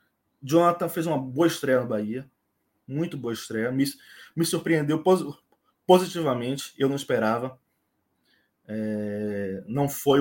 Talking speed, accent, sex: 110 wpm, Brazilian, male